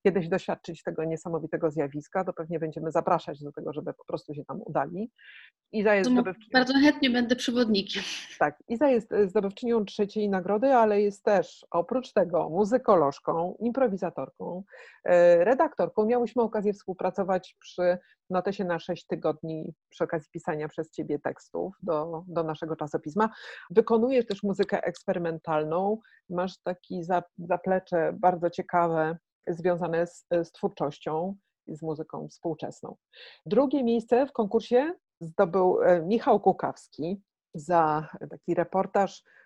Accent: native